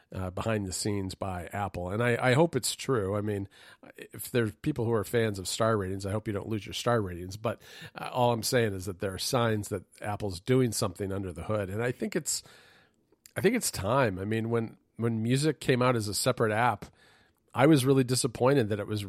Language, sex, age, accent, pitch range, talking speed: English, male, 40-59, American, 100-125 Hz, 235 wpm